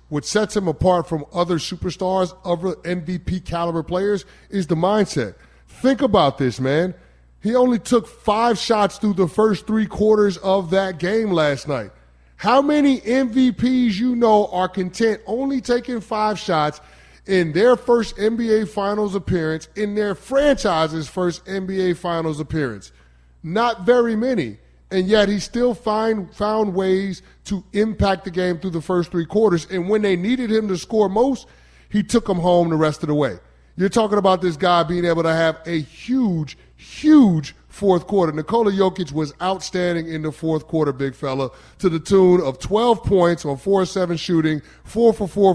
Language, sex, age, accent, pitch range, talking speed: English, male, 30-49, American, 165-215 Hz, 170 wpm